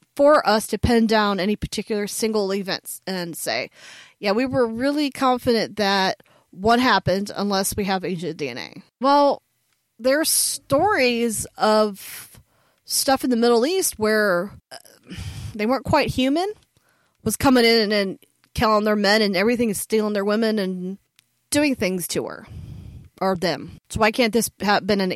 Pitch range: 195-235 Hz